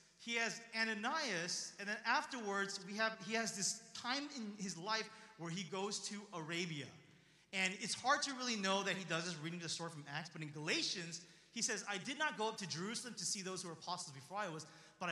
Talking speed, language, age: 225 wpm, English, 30-49